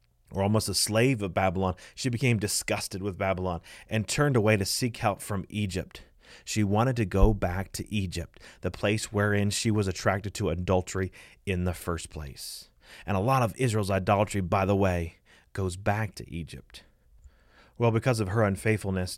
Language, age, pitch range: English, 30-49, 95-110 Hz